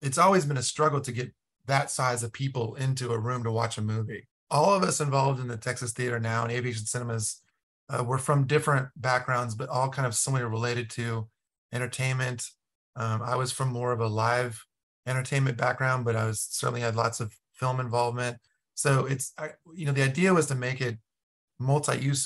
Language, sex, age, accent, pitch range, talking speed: English, male, 30-49, American, 115-140 Hz, 200 wpm